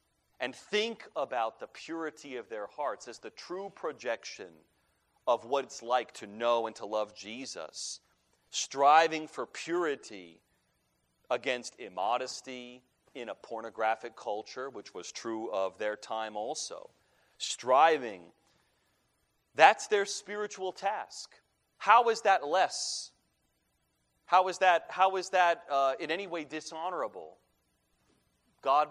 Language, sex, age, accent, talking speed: English, male, 30-49, American, 120 wpm